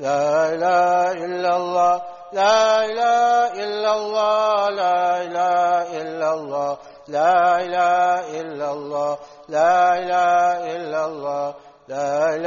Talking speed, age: 65 wpm, 60-79